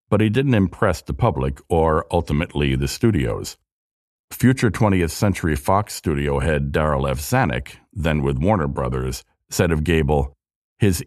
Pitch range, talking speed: 75-105 Hz, 145 wpm